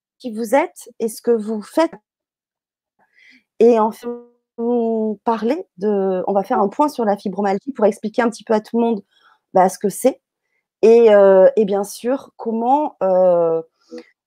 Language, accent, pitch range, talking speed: French, French, 195-240 Hz, 170 wpm